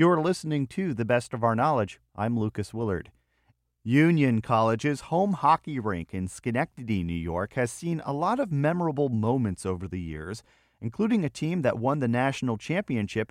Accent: American